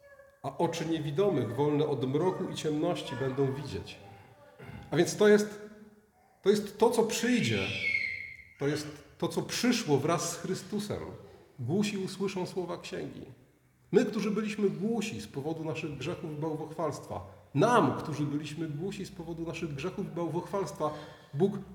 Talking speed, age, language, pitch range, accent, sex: 145 wpm, 40-59, Polish, 150-210 Hz, native, male